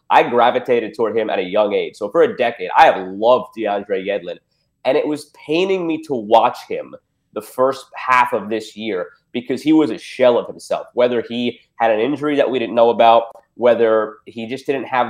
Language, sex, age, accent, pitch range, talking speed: English, male, 30-49, American, 115-155 Hz, 210 wpm